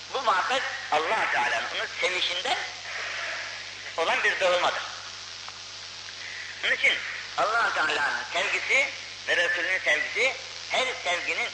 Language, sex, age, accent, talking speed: Turkish, female, 50-69, native, 100 wpm